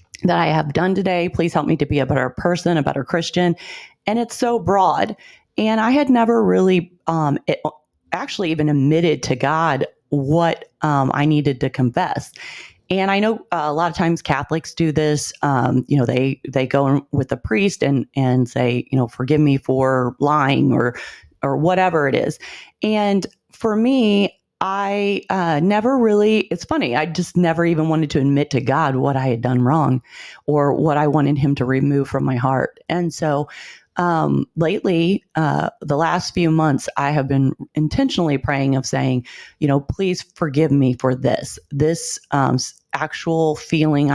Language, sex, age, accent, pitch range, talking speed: English, female, 30-49, American, 135-175 Hz, 180 wpm